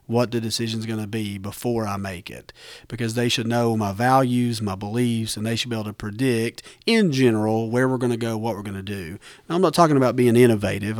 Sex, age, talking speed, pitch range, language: male, 40-59, 240 wpm, 105-120 Hz, English